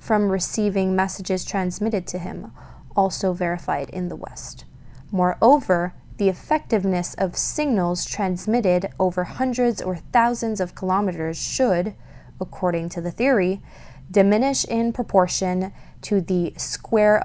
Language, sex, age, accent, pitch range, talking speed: English, female, 20-39, American, 180-210 Hz, 120 wpm